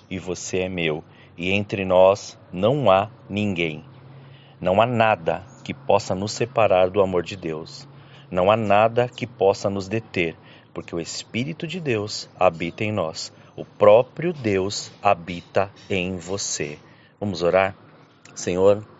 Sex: male